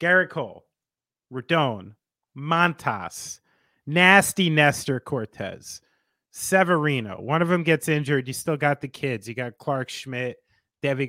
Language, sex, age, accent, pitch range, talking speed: English, male, 30-49, American, 120-165 Hz, 125 wpm